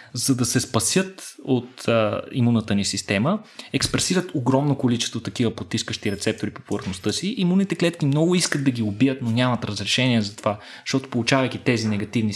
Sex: male